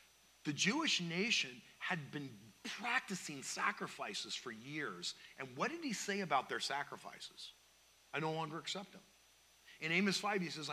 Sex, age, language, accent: male, 40-59, English, American